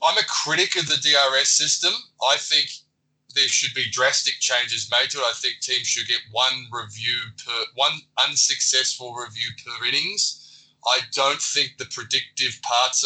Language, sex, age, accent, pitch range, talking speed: English, male, 20-39, Australian, 125-145 Hz, 165 wpm